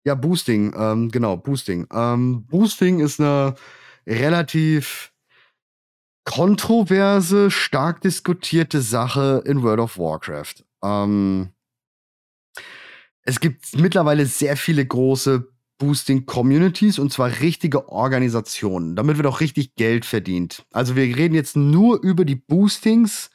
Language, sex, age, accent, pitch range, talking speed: German, male, 30-49, German, 115-175 Hz, 115 wpm